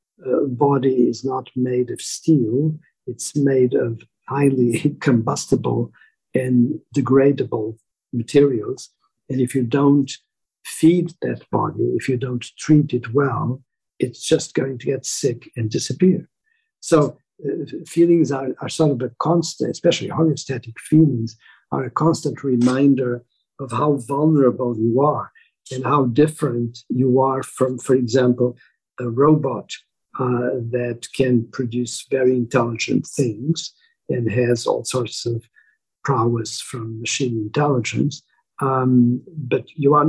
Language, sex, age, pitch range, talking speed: German, male, 60-79, 120-145 Hz, 130 wpm